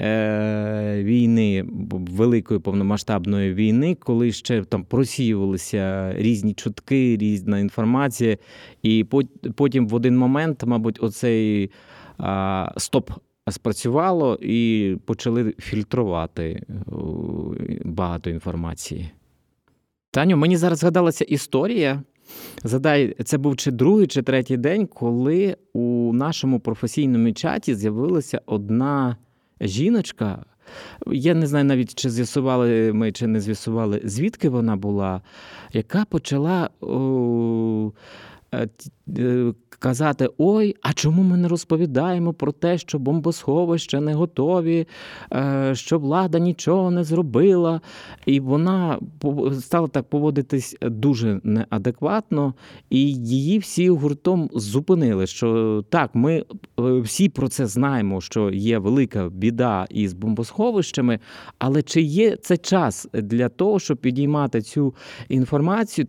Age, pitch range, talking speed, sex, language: 20-39, 110-150 Hz, 105 wpm, male, Ukrainian